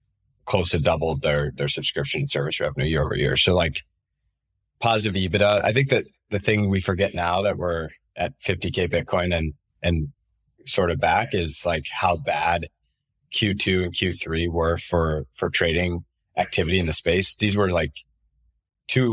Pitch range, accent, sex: 80-95 Hz, American, male